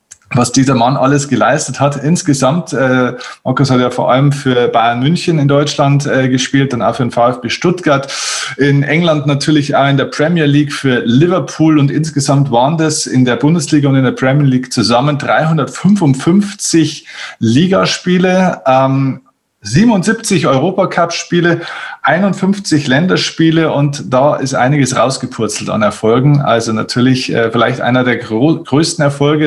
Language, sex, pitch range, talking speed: German, male, 120-155 Hz, 145 wpm